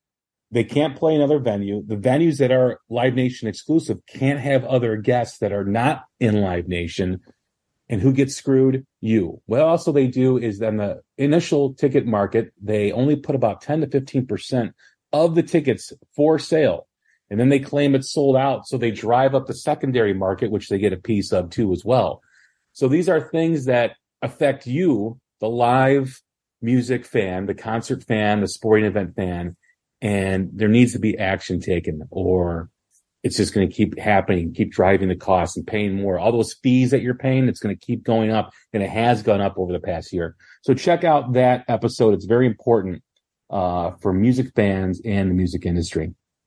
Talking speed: 190 wpm